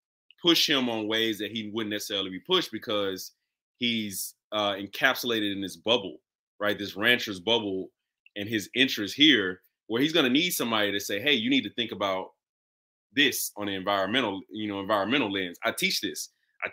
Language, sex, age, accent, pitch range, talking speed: English, male, 20-39, American, 100-130 Hz, 185 wpm